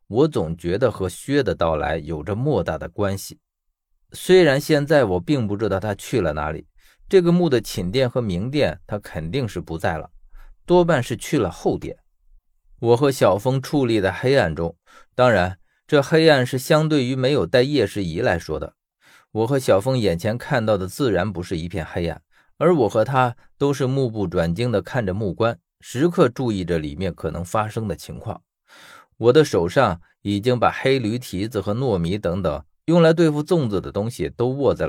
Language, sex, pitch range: Chinese, male, 95-140 Hz